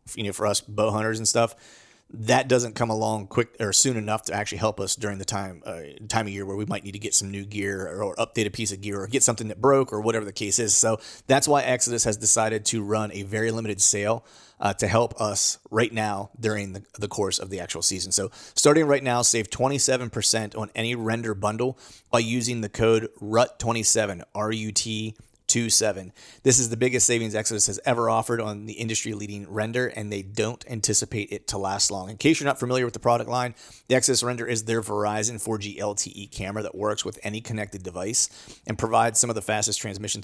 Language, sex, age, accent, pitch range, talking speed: English, male, 30-49, American, 100-120 Hz, 220 wpm